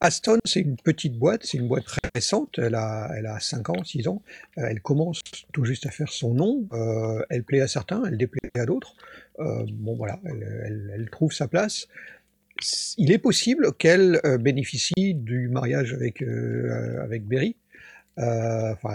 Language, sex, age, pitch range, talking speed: French, male, 50-69, 120-160 Hz, 175 wpm